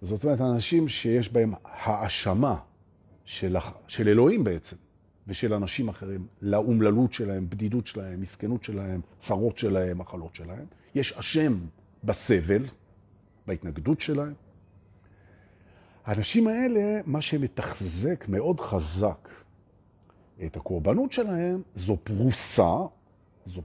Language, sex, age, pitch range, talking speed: Hebrew, male, 40-59, 100-140 Hz, 100 wpm